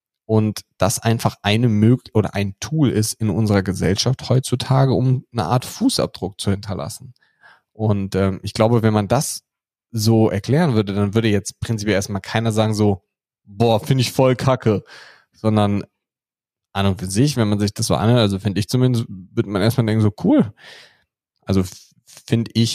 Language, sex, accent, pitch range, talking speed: German, male, German, 105-125 Hz, 175 wpm